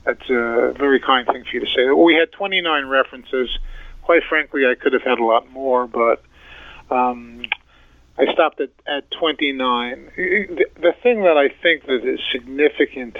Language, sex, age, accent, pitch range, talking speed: English, male, 50-69, American, 125-160 Hz, 170 wpm